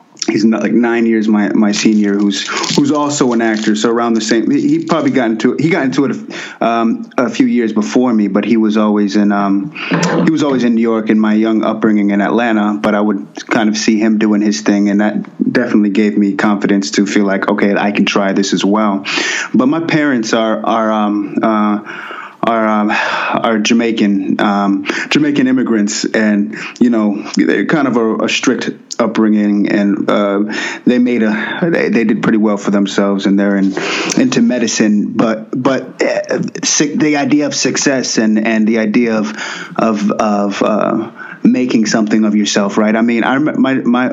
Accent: American